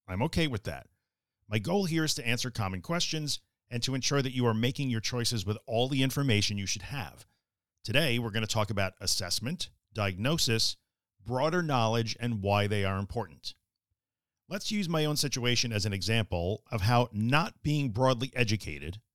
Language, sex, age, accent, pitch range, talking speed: English, male, 50-69, American, 100-130 Hz, 180 wpm